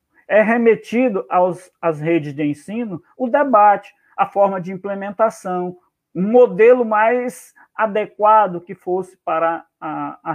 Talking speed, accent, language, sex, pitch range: 130 wpm, Brazilian, Portuguese, male, 170-220 Hz